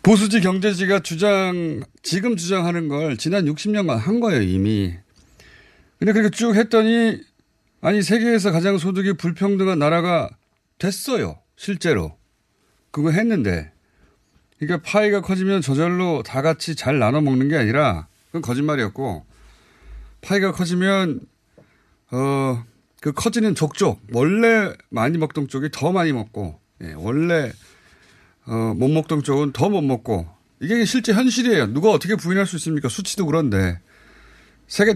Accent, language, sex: native, Korean, male